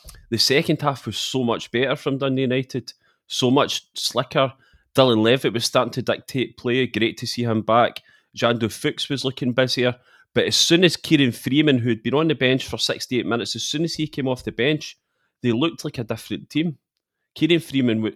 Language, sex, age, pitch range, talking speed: English, male, 30-49, 110-135 Hz, 195 wpm